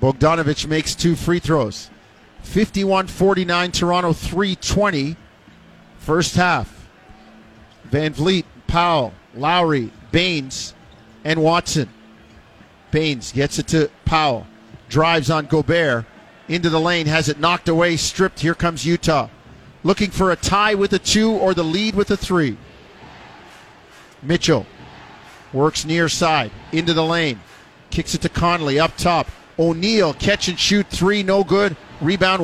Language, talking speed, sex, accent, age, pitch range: English, 130 wpm, male, American, 50-69, 155-185 Hz